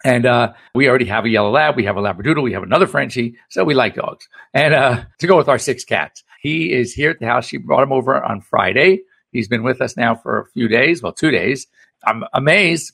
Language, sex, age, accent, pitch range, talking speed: English, male, 60-79, American, 120-185 Hz, 250 wpm